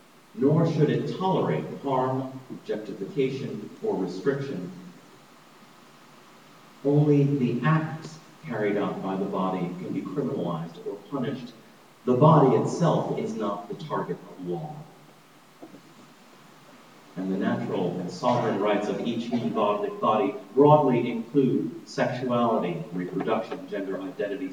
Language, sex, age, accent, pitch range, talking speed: English, male, 40-59, American, 105-145 Hz, 110 wpm